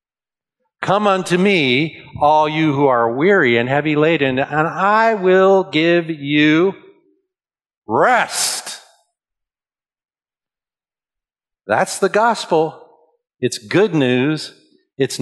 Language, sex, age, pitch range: English, male, 50-69, 110-180 Hz